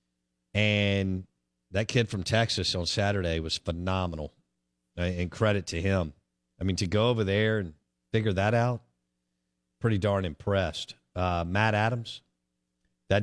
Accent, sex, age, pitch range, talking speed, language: American, male, 50-69, 85-115 Hz, 135 wpm, English